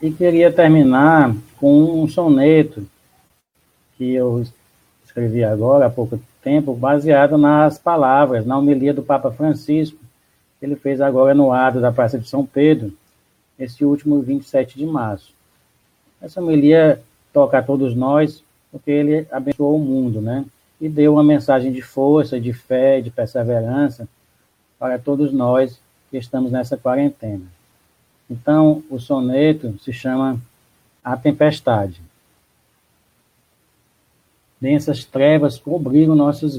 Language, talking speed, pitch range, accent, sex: Portuguese, 125 wpm, 120-145 Hz, Brazilian, male